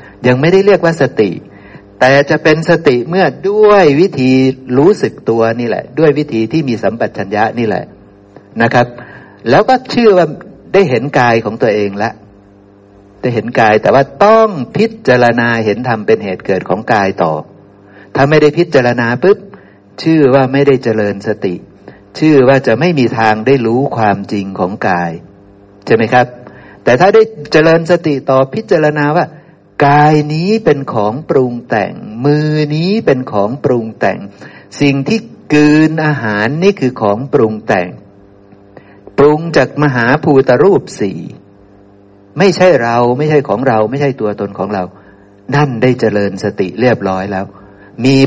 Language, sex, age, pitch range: Thai, male, 60-79, 105-150 Hz